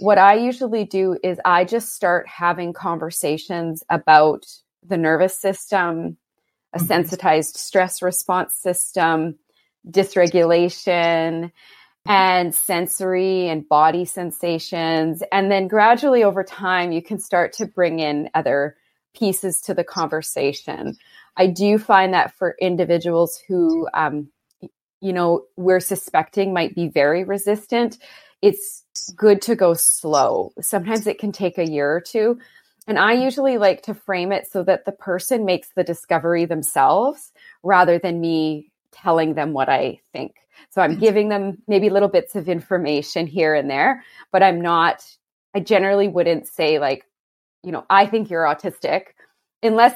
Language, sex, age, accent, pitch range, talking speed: English, female, 20-39, American, 170-200 Hz, 145 wpm